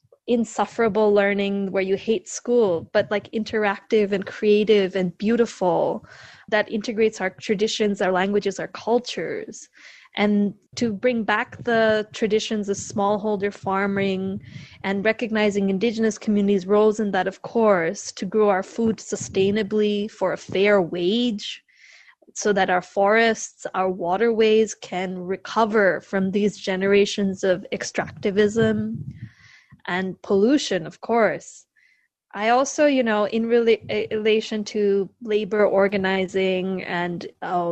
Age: 20-39